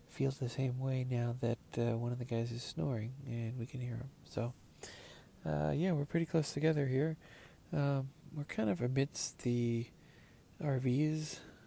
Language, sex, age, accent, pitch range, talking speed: English, male, 40-59, American, 120-145 Hz, 170 wpm